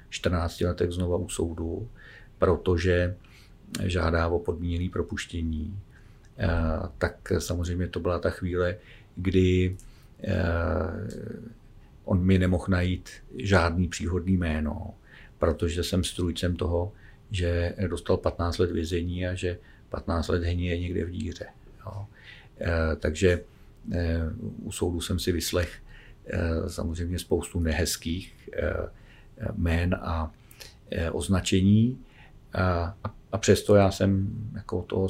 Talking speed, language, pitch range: 105 wpm, Czech, 85-100 Hz